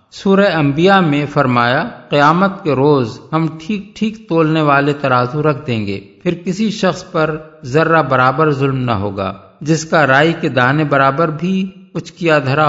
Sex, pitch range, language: male, 135-175 Hz, Urdu